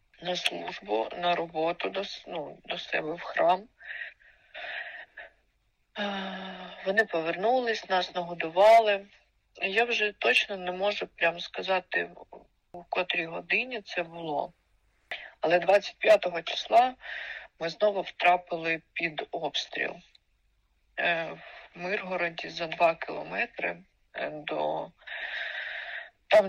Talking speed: 90 wpm